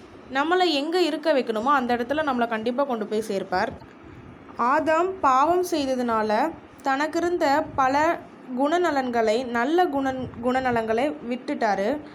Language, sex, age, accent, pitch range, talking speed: Tamil, female, 20-39, native, 235-310 Hz, 110 wpm